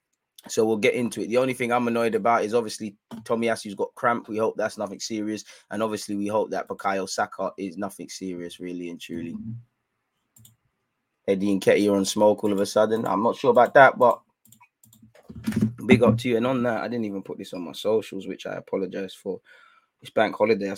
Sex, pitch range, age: male, 100-115 Hz, 20-39